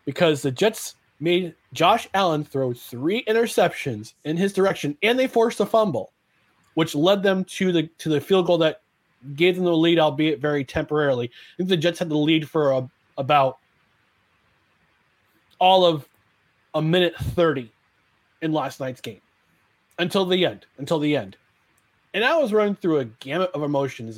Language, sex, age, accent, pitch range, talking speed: English, male, 30-49, American, 140-195 Hz, 170 wpm